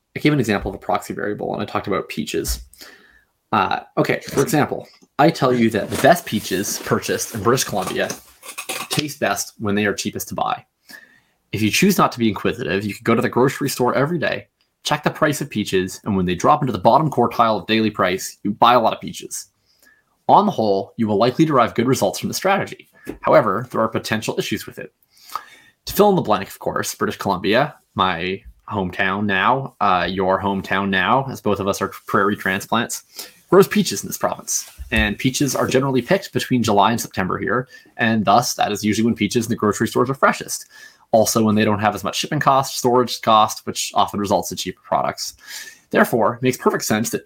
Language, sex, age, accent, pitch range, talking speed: English, male, 20-39, American, 100-130 Hz, 210 wpm